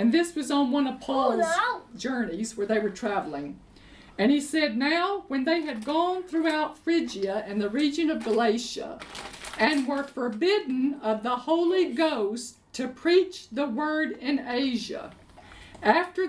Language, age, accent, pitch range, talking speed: English, 50-69, American, 265-360 Hz, 150 wpm